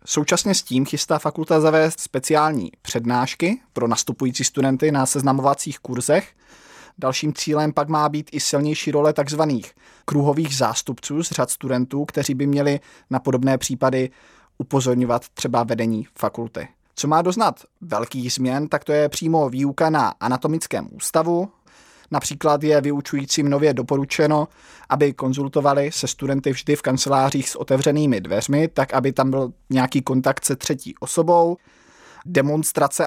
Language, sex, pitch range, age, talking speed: Czech, male, 130-150 Hz, 20-39, 140 wpm